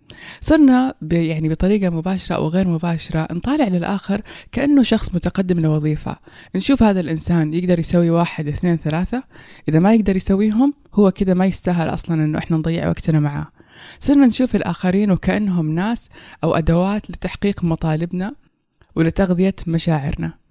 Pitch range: 160-205 Hz